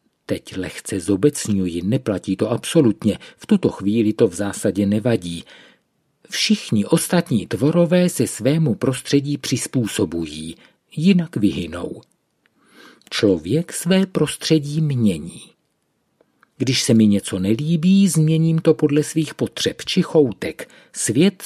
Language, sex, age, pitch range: Czech, male, 50-69, 110-165 Hz